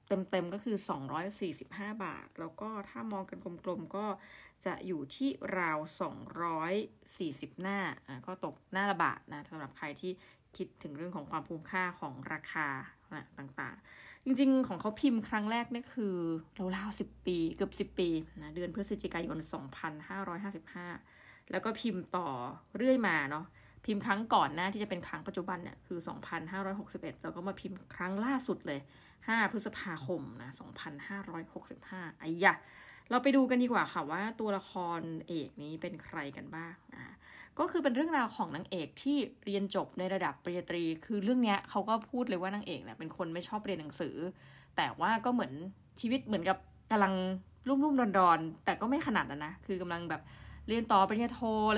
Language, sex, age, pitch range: Thai, female, 20-39, 165-215 Hz